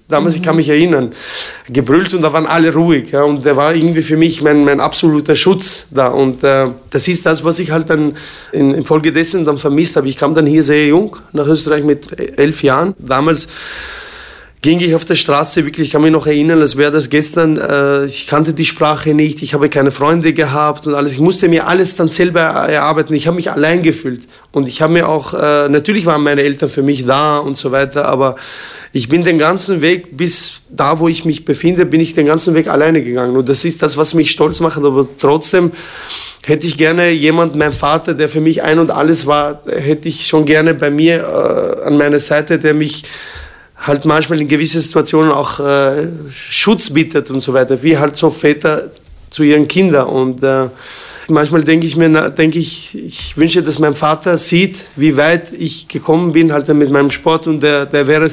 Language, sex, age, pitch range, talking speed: German, male, 20-39, 145-165 Hz, 210 wpm